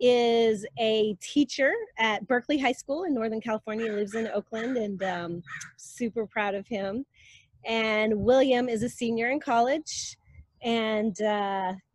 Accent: American